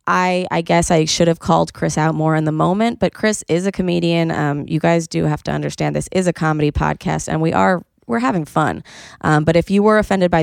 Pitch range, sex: 155-185 Hz, female